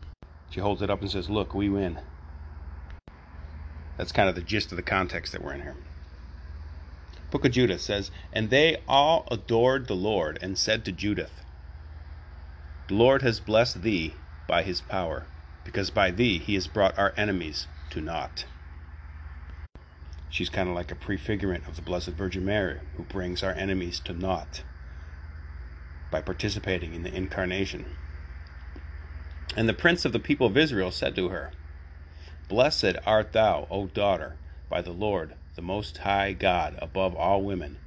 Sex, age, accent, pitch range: male, 40-59, American, 75-95 Hz